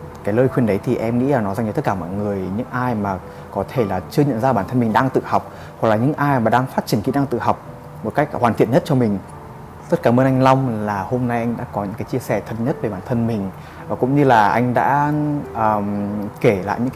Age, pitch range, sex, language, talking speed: 20-39, 105-130 Hz, male, Vietnamese, 285 wpm